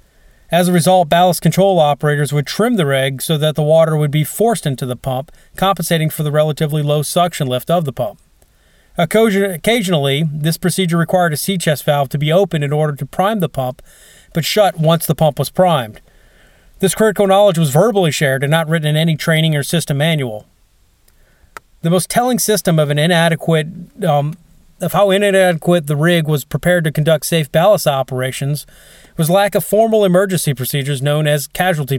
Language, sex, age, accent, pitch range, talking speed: English, male, 30-49, American, 145-180 Hz, 180 wpm